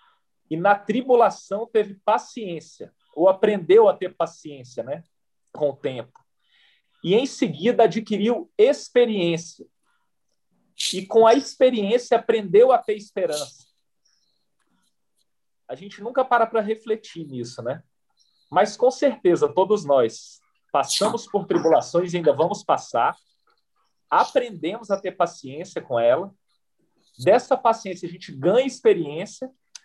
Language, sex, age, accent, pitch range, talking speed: Portuguese, male, 40-59, Brazilian, 170-245 Hz, 120 wpm